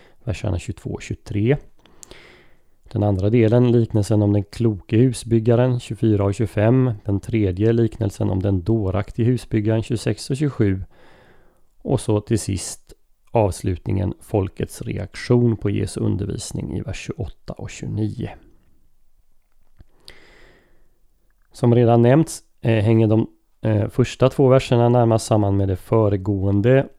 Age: 30-49